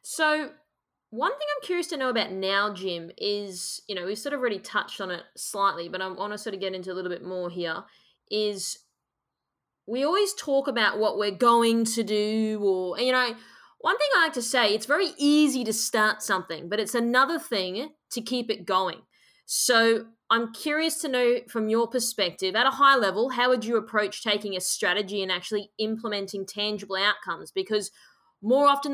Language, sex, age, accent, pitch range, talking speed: English, female, 20-39, Australian, 200-250 Hz, 195 wpm